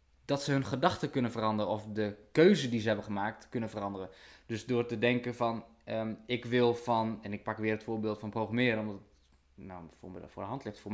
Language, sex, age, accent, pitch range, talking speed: Dutch, male, 20-39, Dutch, 110-130 Hz, 225 wpm